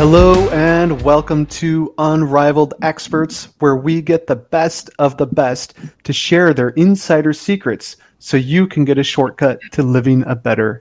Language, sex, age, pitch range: English, male, 30-49, 125-155 Hz